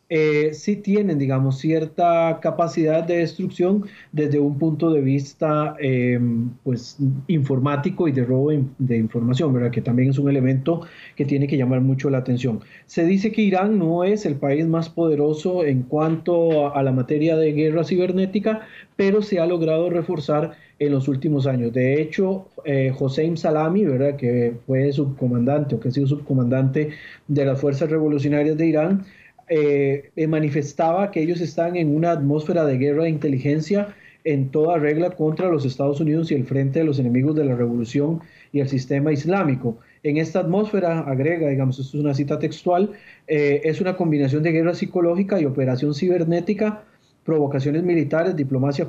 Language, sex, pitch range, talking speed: Spanish, male, 140-170 Hz, 170 wpm